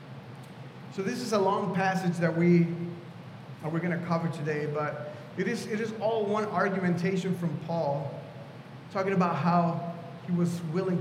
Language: English